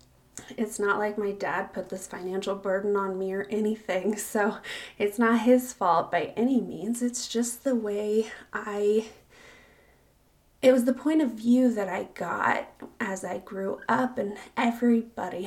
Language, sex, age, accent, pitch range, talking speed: English, female, 20-39, American, 205-245 Hz, 160 wpm